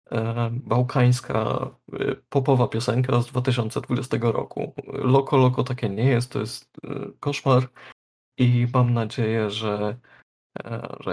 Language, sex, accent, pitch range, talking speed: Polish, male, native, 120-145 Hz, 100 wpm